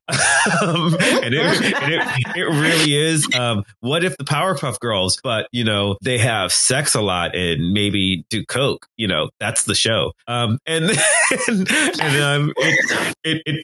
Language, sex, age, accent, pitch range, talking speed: English, male, 30-49, American, 100-140 Hz, 175 wpm